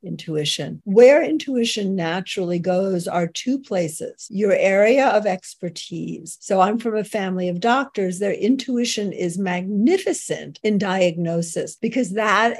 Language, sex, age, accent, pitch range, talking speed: English, female, 50-69, American, 185-255 Hz, 130 wpm